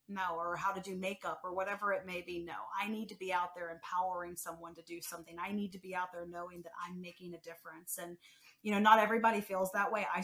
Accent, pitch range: American, 175-210 Hz